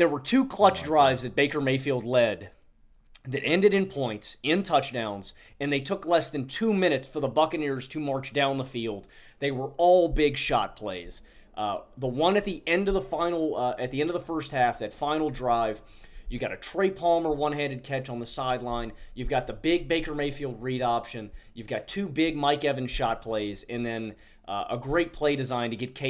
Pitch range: 120-155 Hz